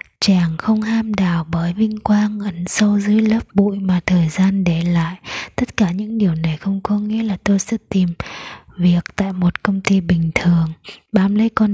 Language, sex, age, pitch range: Japanese, female, 20-39, 175-210 Hz